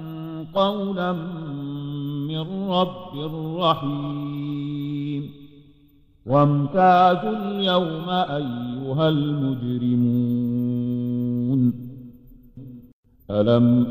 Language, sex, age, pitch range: English, male, 50-69, 140-180 Hz